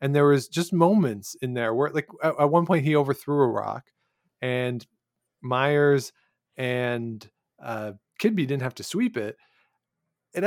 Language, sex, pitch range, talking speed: English, male, 120-160 Hz, 155 wpm